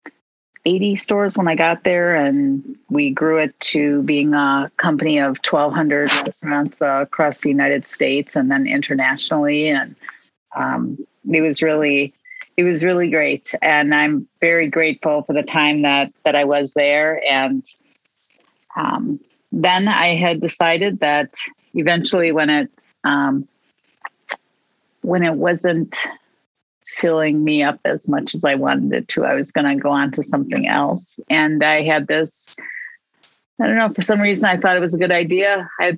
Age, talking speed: 40-59, 160 wpm